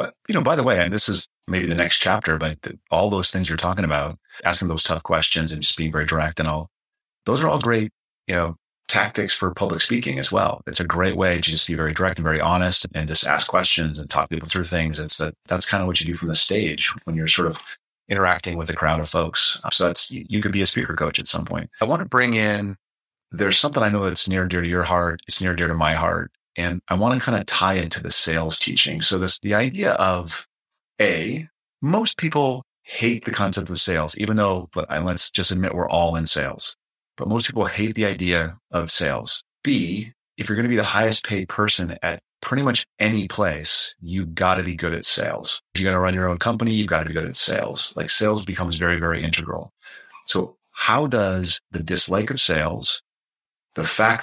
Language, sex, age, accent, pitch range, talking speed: English, male, 30-49, American, 85-105 Hz, 235 wpm